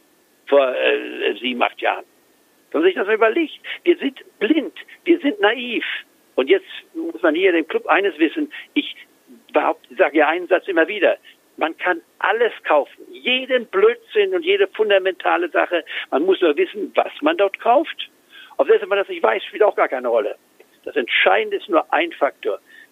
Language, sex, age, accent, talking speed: German, male, 60-79, German, 180 wpm